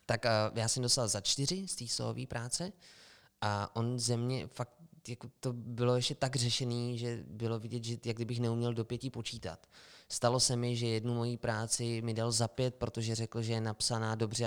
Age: 20-39